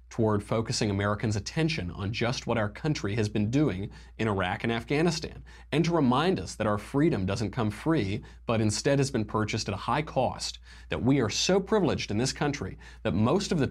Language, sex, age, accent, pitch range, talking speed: English, male, 30-49, American, 105-140 Hz, 205 wpm